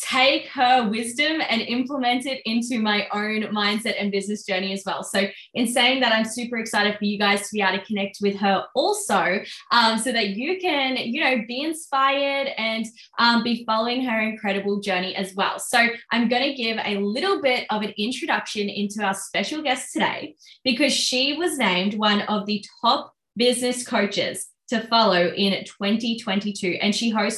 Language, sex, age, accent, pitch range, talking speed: English, female, 20-39, Australian, 200-245 Hz, 180 wpm